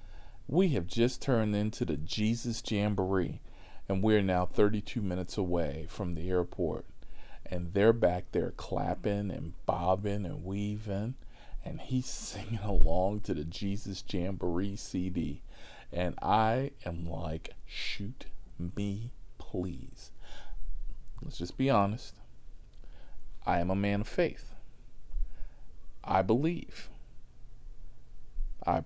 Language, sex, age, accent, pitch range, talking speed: English, male, 40-59, American, 90-115 Hz, 115 wpm